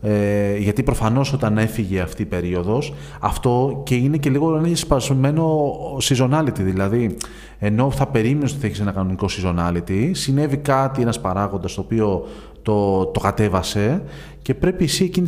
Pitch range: 100-150 Hz